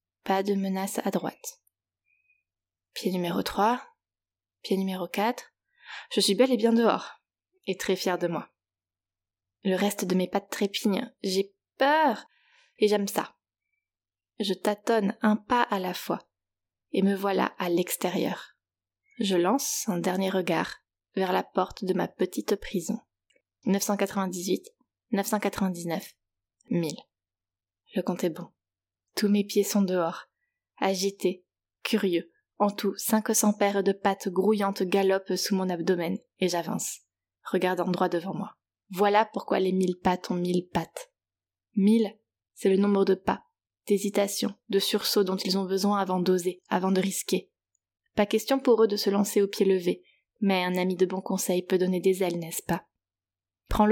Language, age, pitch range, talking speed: French, 20-39, 180-210 Hz, 150 wpm